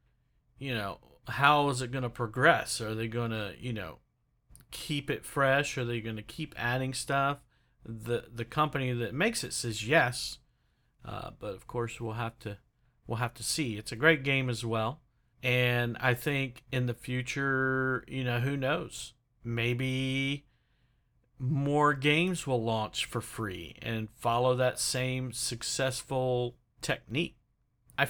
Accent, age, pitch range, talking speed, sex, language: American, 50-69, 120-140 Hz, 155 wpm, male, English